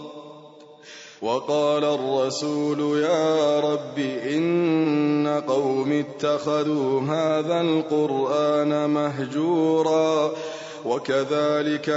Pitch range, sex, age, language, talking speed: 150-160 Hz, male, 30-49, Arabic, 55 wpm